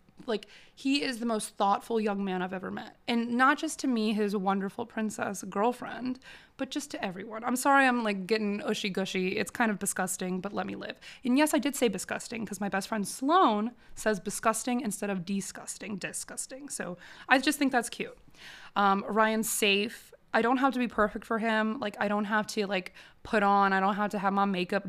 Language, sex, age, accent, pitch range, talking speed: English, female, 20-39, American, 195-250 Hz, 210 wpm